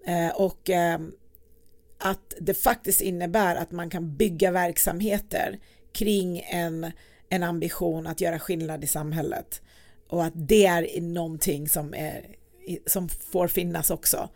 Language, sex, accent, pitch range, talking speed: Swedish, female, native, 165-200 Hz, 135 wpm